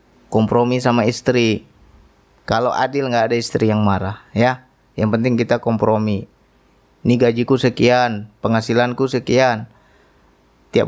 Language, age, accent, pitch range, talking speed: Indonesian, 20-39, native, 110-150 Hz, 115 wpm